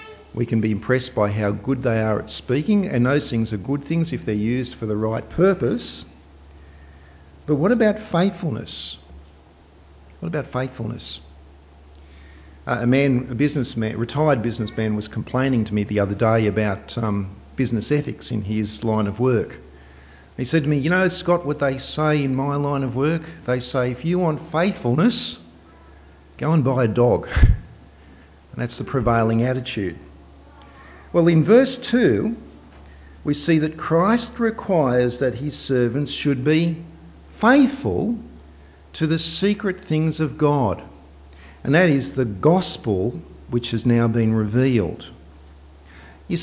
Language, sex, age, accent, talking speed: English, male, 50-69, Australian, 150 wpm